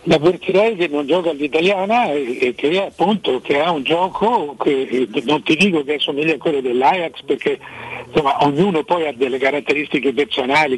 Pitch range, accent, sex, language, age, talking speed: 140-190 Hz, native, male, Italian, 60-79, 150 wpm